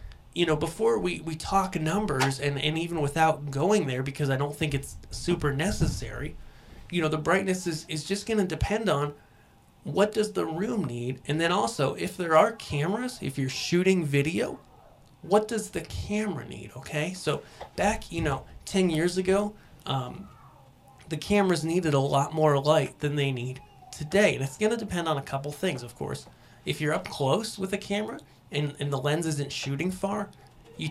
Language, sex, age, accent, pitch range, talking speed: English, male, 30-49, American, 140-190 Hz, 190 wpm